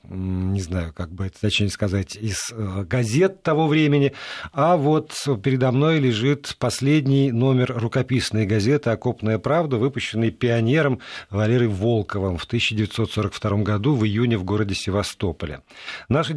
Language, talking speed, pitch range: Russian, 130 wpm, 115-145 Hz